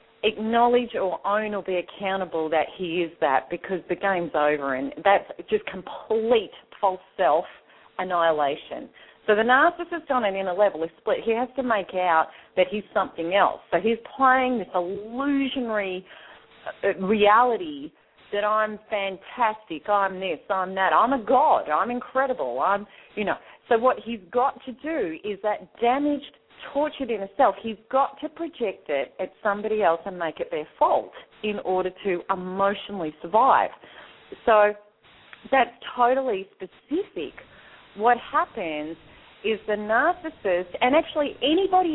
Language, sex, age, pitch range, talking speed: English, female, 40-59, 190-255 Hz, 145 wpm